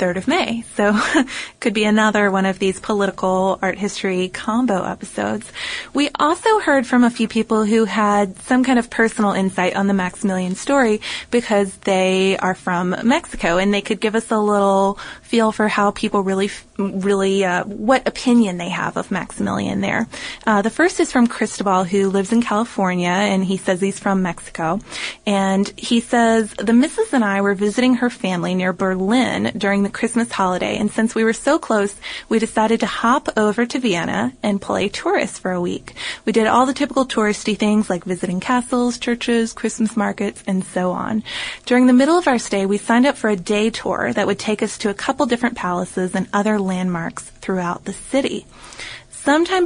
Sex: female